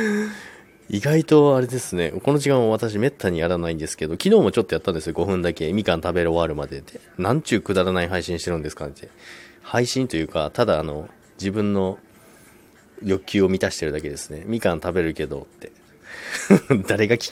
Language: Japanese